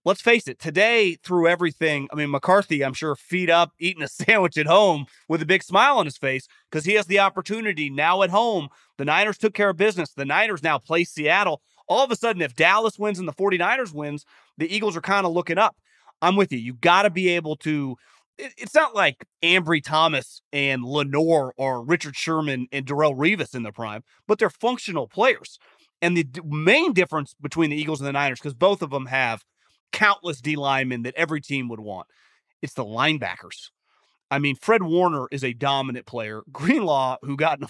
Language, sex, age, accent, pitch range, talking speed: English, male, 30-49, American, 140-190 Hz, 205 wpm